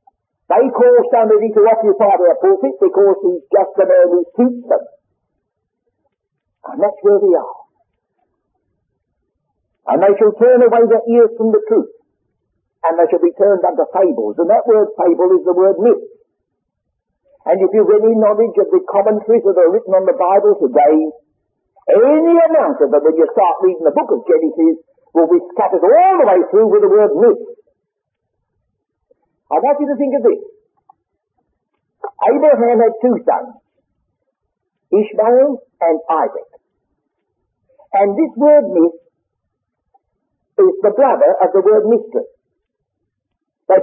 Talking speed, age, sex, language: 150 wpm, 50-69, male, English